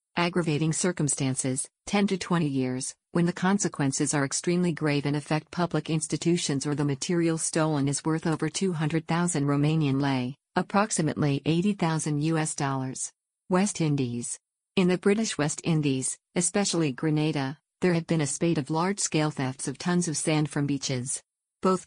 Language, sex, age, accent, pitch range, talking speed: English, female, 50-69, American, 140-170 Hz, 150 wpm